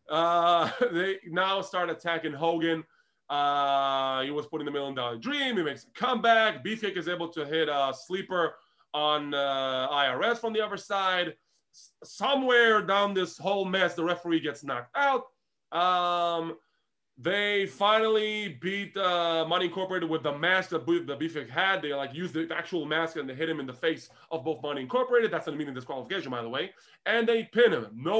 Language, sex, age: English, male, 20-39